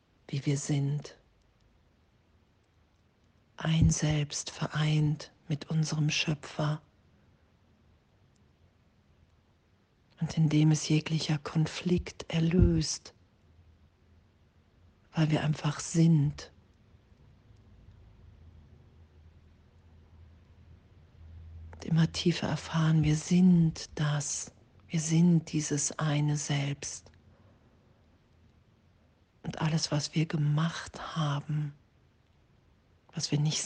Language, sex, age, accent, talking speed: German, female, 40-59, German, 75 wpm